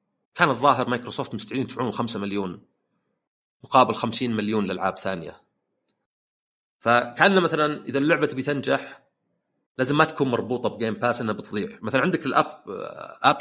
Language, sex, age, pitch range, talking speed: Arabic, male, 40-59, 110-155 Hz, 130 wpm